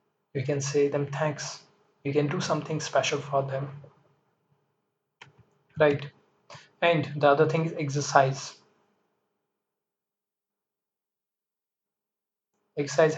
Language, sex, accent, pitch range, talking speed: English, male, Indian, 140-160 Hz, 90 wpm